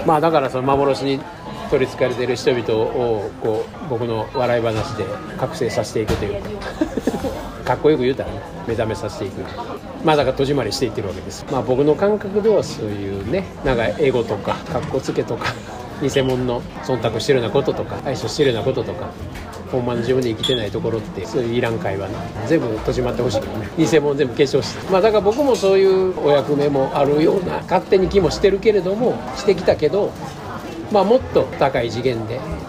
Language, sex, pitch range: Japanese, male, 115-155 Hz